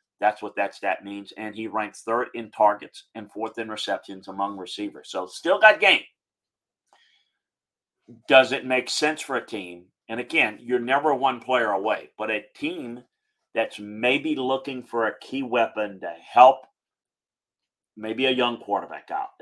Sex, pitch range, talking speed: male, 105-160 Hz, 160 wpm